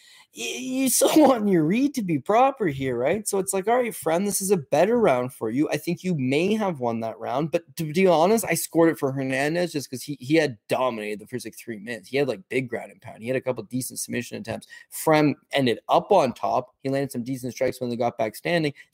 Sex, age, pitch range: male, 20-39, 125-175 Hz